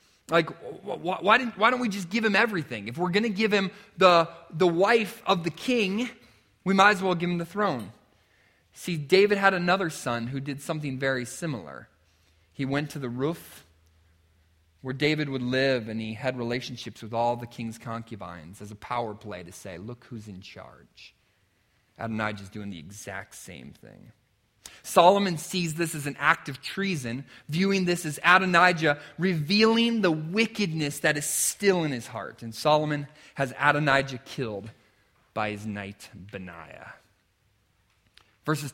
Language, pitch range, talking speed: English, 110-180 Hz, 165 wpm